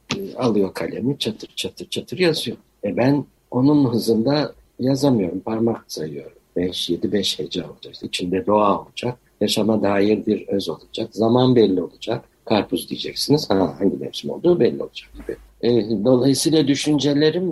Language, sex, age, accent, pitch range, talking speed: Turkish, male, 60-79, native, 100-140 Hz, 135 wpm